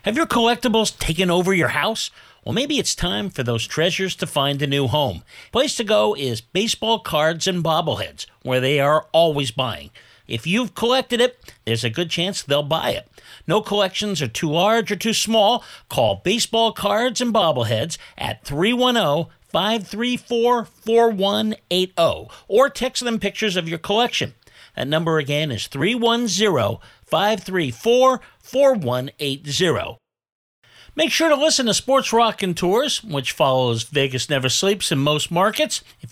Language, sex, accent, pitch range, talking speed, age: English, male, American, 140-225 Hz, 160 wpm, 50-69